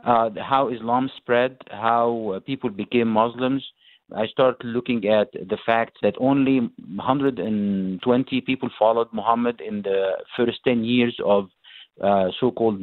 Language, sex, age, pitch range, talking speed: English, male, 50-69, 105-125 Hz, 125 wpm